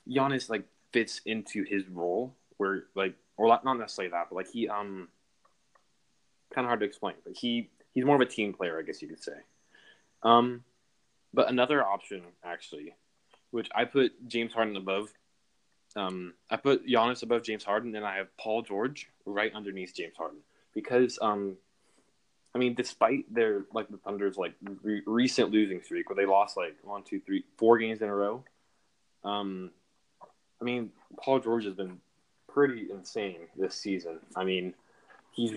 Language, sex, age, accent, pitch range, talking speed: English, male, 20-39, American, 95-120 Hz, 170 wpm